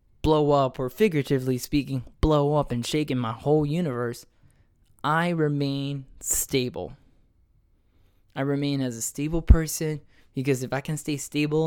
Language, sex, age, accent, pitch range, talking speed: English, male, 10-29, American, 125-155 Hz, 145 wpm